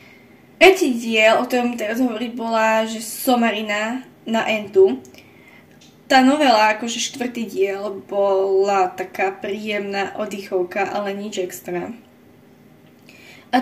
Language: Slovak